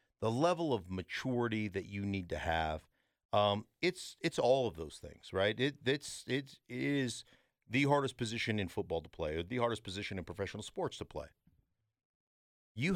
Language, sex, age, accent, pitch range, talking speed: English, male, 50-69, American, 105-150 Hz, 180 wpm